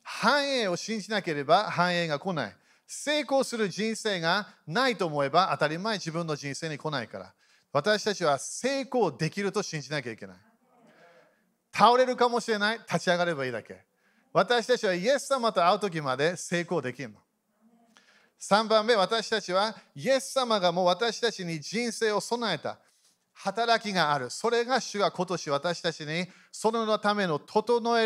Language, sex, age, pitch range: Japanese, male, 40-59, 170-230 Hz